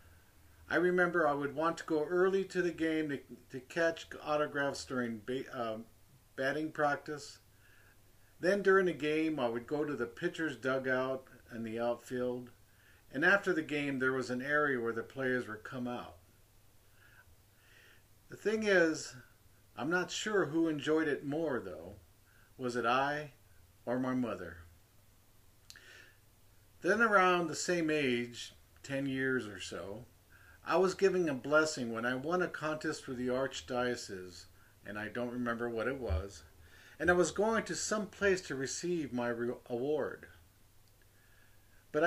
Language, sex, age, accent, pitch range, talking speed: English, male, 50-69, American, 105-155 Hz, 150 wpm